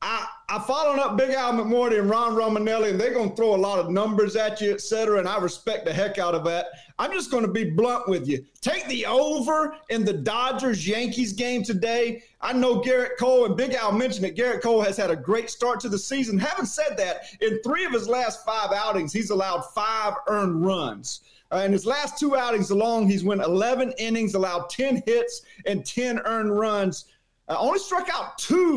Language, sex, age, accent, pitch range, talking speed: English, male, 40-59, American, 200-250 Hz, 215 wpm